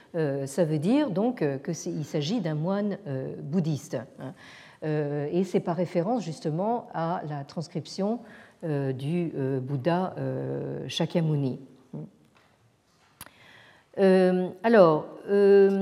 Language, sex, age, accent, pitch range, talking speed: French, female, 50-69, French, 145-195 Hz, 80 wpm